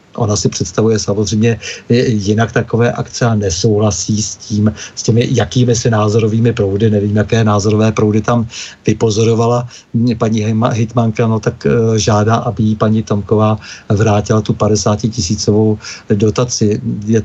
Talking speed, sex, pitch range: 135 wpm, male, 105-115 Hz